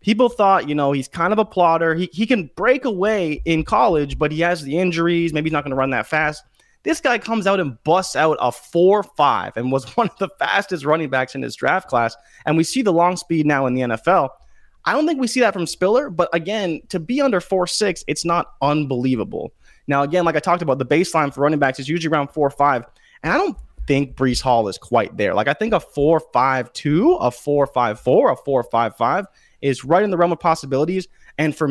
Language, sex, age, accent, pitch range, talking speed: English, male, 20-39, American, 130-180 Hz, 235 wpm